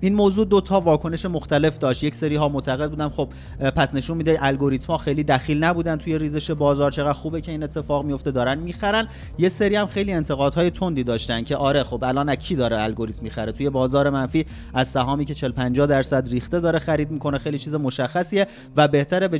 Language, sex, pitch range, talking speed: Persian, male, 135-160 Hz, 200 wpm